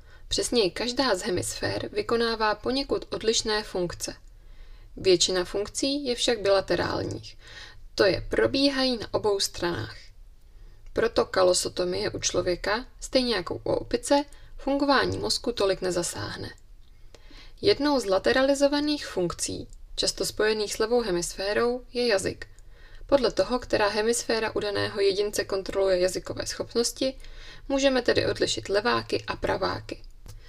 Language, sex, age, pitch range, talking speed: Czech, female, 20-39, 195-280 Hz, 110 wpm